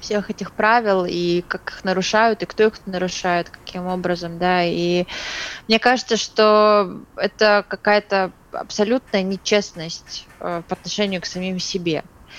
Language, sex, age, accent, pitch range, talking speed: Russian, female, 20-39, native, 180-215 Hz, 130 wpm